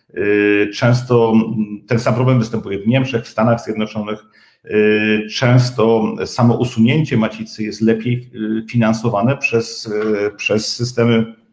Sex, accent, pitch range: male, native, 110-125 Hz